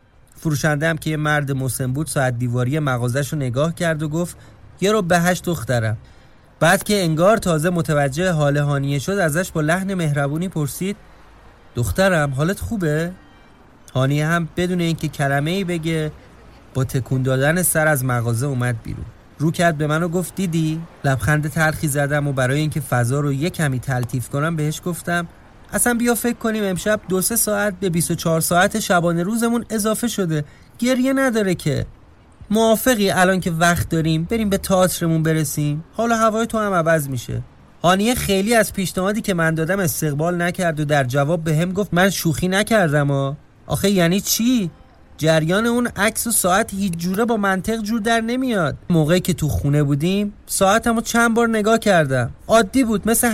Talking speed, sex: 170 wpm, male